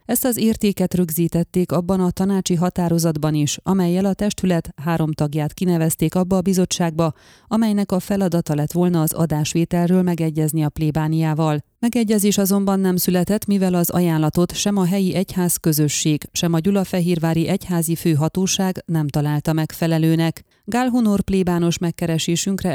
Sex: female